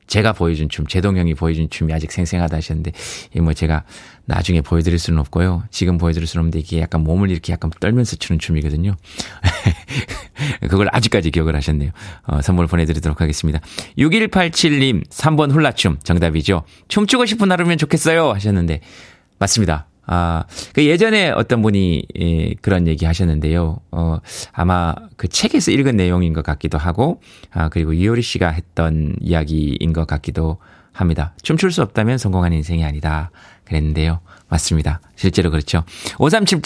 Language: Korean